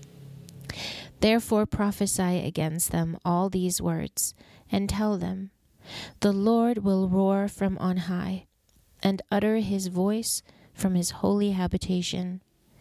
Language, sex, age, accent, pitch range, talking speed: English, female, 30-49, American, 175-205 Hz, 115 wpm